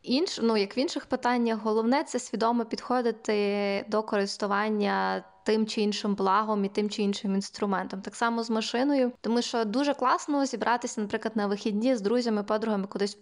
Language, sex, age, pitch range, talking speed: Ukrainian, female, 20-39, 205-240 Hz, 175 wpm